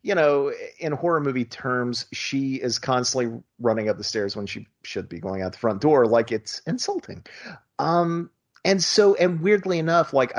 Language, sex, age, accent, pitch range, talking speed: English, male, 30-49, American, 105-145 Hz, 185 wpm